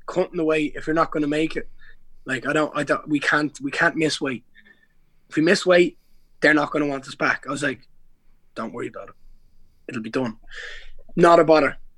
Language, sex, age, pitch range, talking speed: English, male, 20-39, 140-165 Hz, 225 wpm